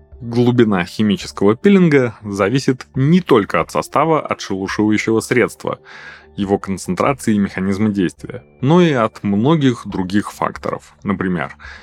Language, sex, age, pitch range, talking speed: Russian, male, 20-39, 95-120 Hz, 115 wpm